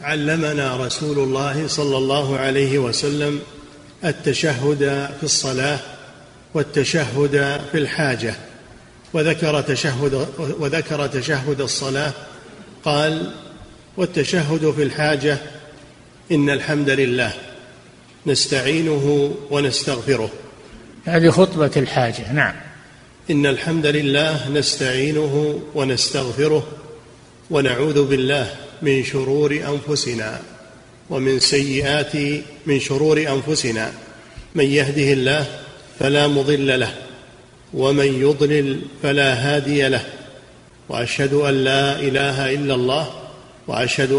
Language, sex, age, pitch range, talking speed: Arabic, male, 50-69, 135-150 Hz, 85 wpm